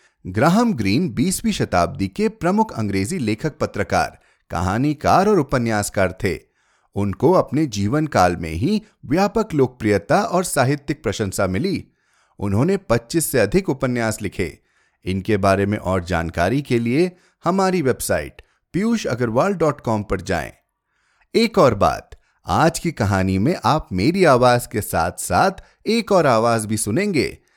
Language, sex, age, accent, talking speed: Hindi, male, 30-49, native, 135 wpm